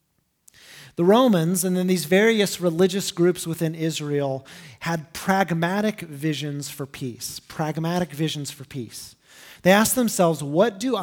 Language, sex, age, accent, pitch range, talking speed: English, male, 30-49, American, 155-195 Hz, 130 wpm